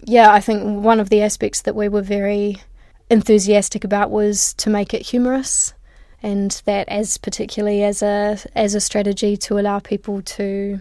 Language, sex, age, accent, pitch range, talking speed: English, female, 20-39, Australian, 205-215 Hz, 170 wpm